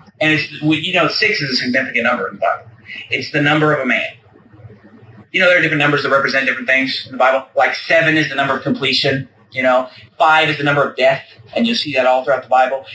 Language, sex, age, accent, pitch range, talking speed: English, male, 30-49, American, 130-185 Hz, 250 wpm